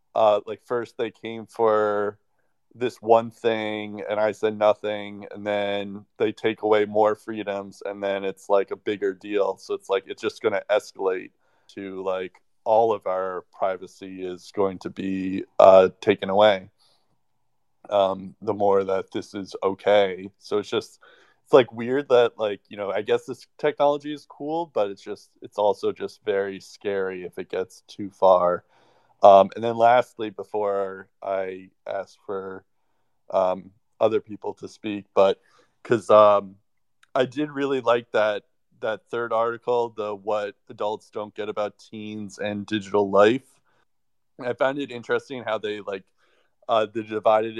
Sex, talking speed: male, 160 wpm